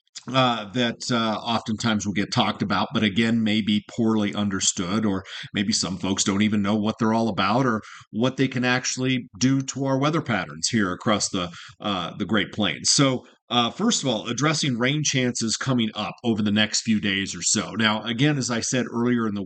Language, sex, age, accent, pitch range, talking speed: English, male, 40-59, American, 105-130 Hz, 205 wpm